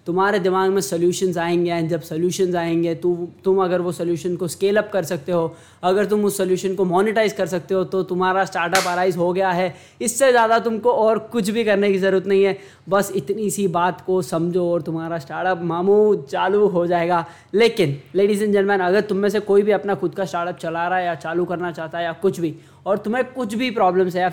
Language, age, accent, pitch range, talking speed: Hindi, 20-39, native, 175-210 Hz, 225 wpm